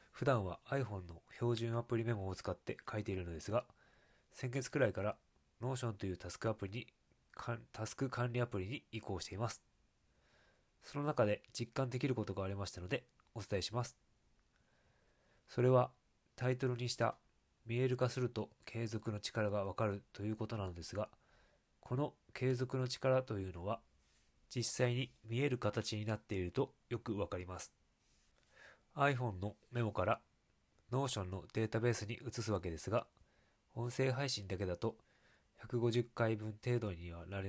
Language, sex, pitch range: Japanese, male, 95-125 Hz